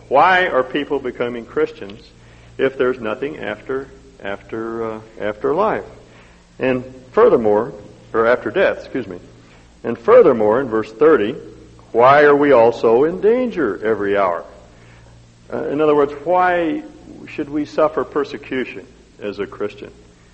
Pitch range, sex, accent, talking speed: 95-130 Hz, male, American, 135 wpm